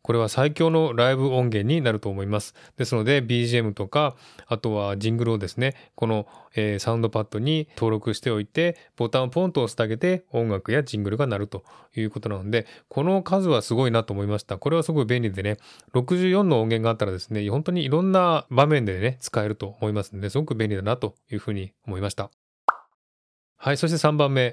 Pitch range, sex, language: 110-150 Hz, male, Japanese